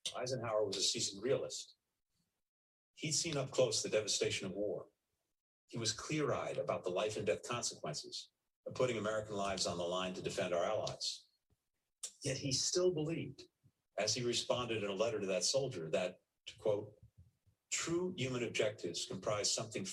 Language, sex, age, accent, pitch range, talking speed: English, male, 40-59, American, 105-140 Hz, 165 wpm